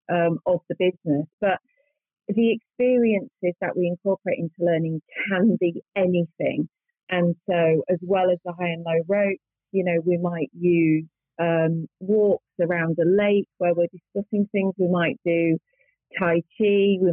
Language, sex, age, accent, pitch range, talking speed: English, female, 30-49, British, 165-190 Hz, 160 wpm